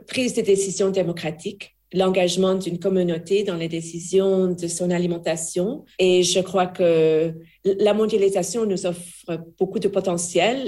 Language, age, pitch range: French, 40-59, 175-200 Hz